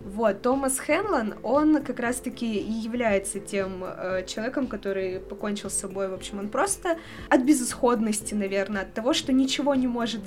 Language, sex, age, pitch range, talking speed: Russian, female, 20-39, 205-265 Hz, 165 wpm